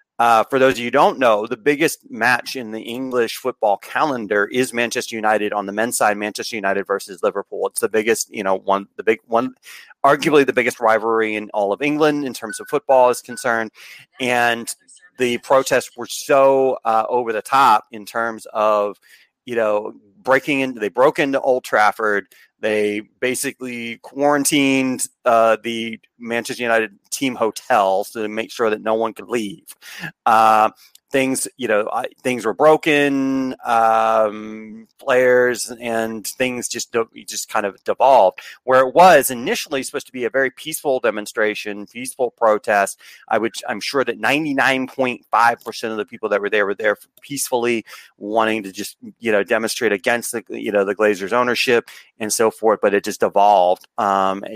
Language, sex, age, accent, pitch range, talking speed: English, male, 30-49, American, 110-130 Hz, 170 wpm